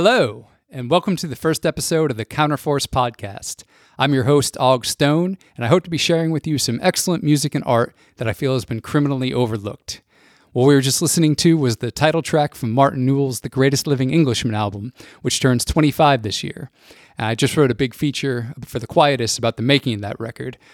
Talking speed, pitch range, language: 215 wpm, 115-145 Hz, English